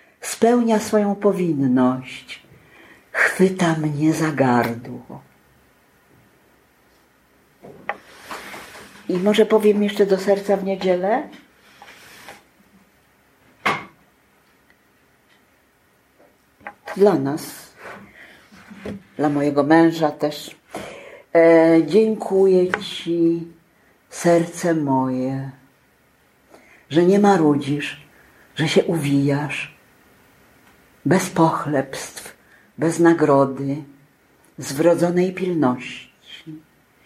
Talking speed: 60 wpm